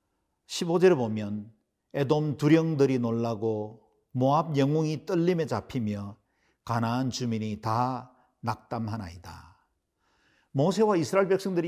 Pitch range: 115-155 Hz